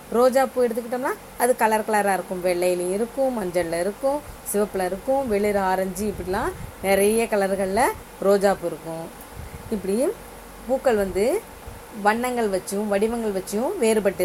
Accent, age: Indian, 30-49